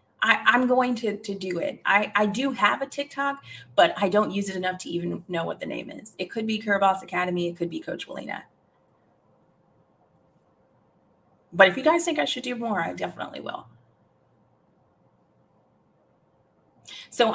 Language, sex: English, female